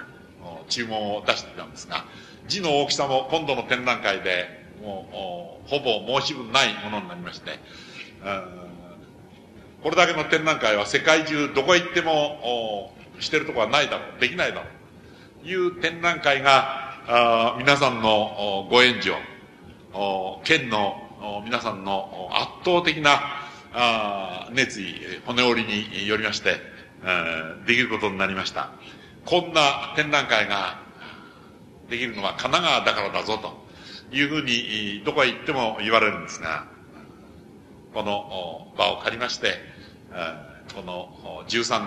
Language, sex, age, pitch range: Japanese, male, 60-79, 100-145 Hz